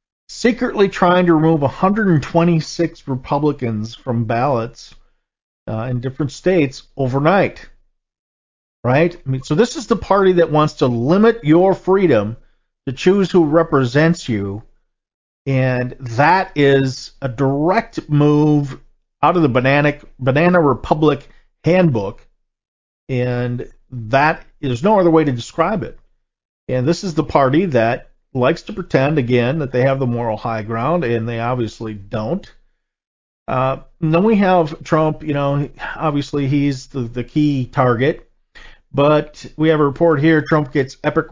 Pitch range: 125-165 Hz